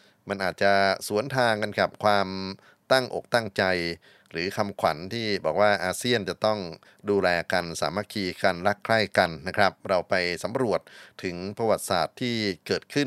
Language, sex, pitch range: Thai, male, 90-115 Hz